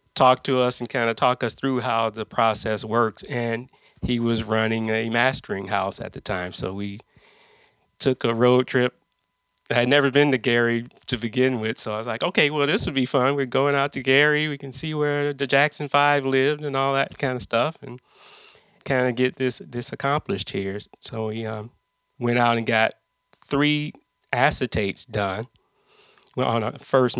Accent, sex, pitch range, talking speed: American, male, 110-135 Hz, 195 wpm